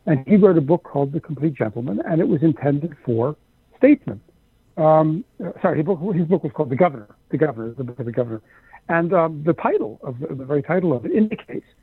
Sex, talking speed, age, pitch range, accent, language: male, 230 wpm, 60-79, 135-165 Hz, American, English